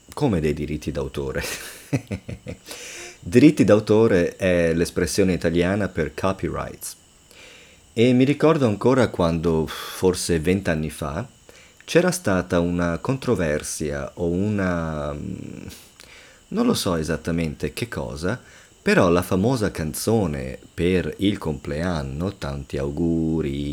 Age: 30-49